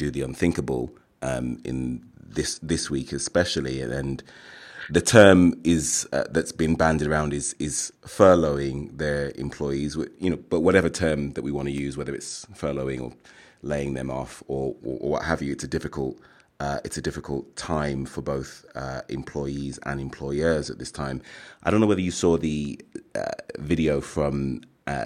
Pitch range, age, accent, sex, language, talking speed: 70-80 Hz, 30-49, British, male, English, 180 wpm